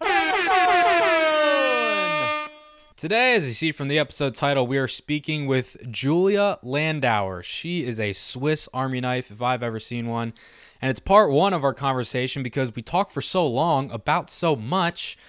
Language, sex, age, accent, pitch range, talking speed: English, male, 20-39, American, 120-160 Hz, 160 wpm